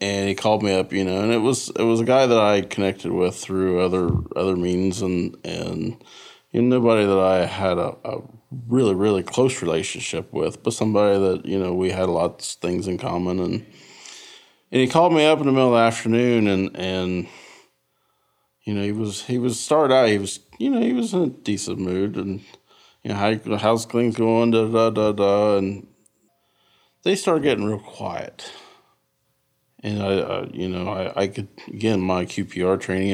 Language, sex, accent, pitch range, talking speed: English, male, American, 90-110 Hz, 205 wpm